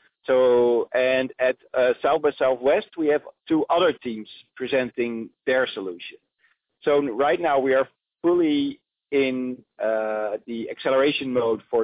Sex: male